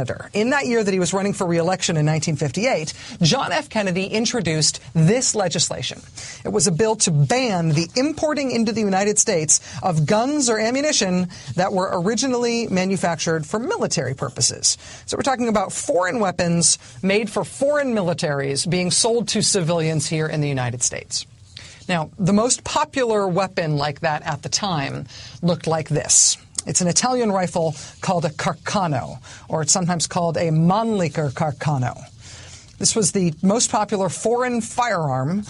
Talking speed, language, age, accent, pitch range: 155 wpm, English, 40-59, American, 140-205 Hz